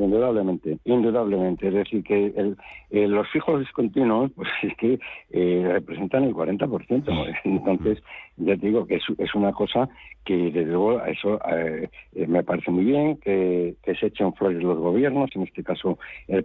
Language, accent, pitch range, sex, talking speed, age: Spanish, Spanish, 95-140 Hz, male, 170 wpm, 60-79